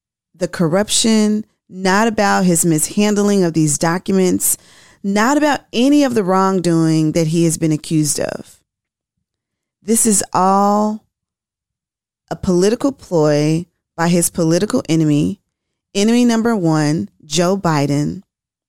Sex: female